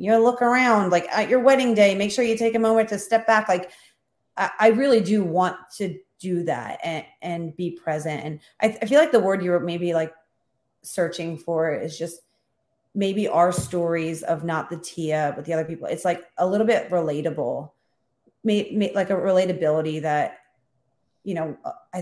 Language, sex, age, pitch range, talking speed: English, female, 30-49, 155-185 Hz, 195 wpm